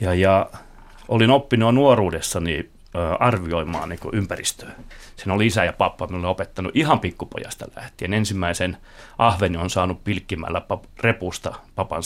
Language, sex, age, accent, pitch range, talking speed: Finnish, male, 30-49, native, 90-115 Hz, 120 wpm